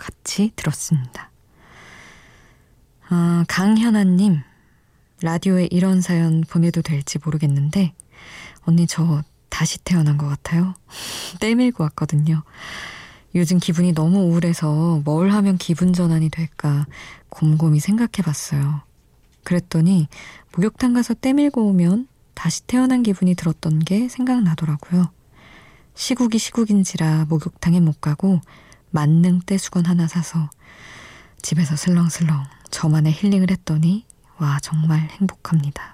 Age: 20-39